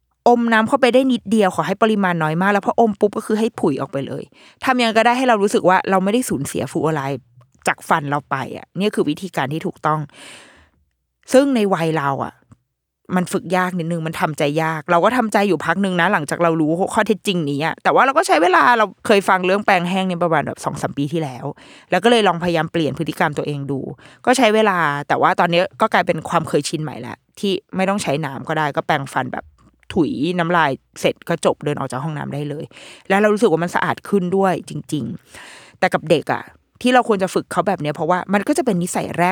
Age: 20-39